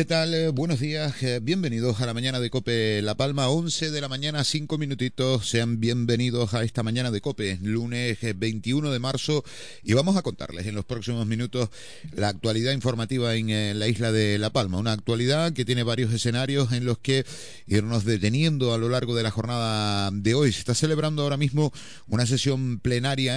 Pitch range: 105-130 Hz